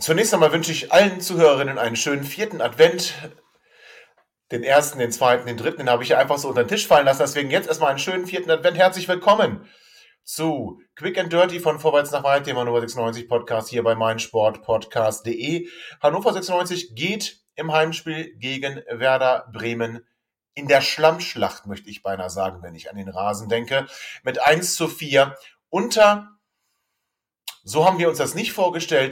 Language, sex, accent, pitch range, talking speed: German, male, German, 120-170 Hz, 175 wpm